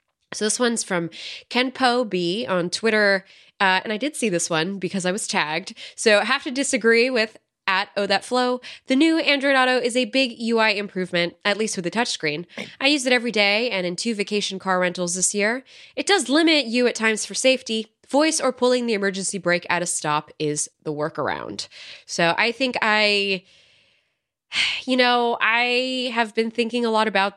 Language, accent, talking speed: English, American, 195 wpm